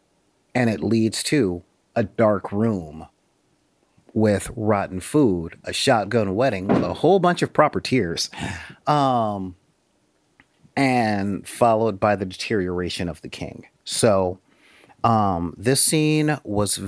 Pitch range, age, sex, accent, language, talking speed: 90-115 Hz, 30-49, male, American, English, 120 wpm